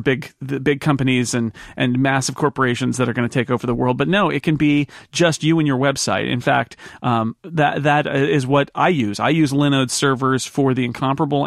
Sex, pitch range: male, 120-145 Hz